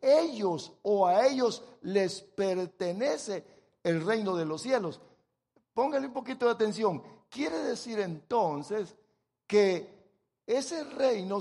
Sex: male